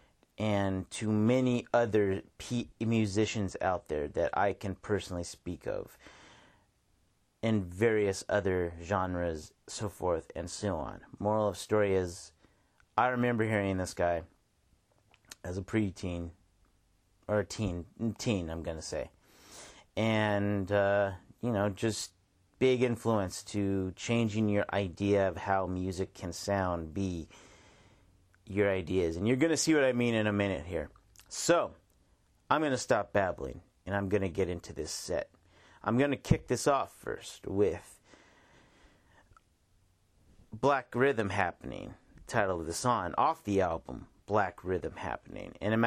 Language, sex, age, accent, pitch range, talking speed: English, male, 30-49, American, 90-110 Hz, 145 wpm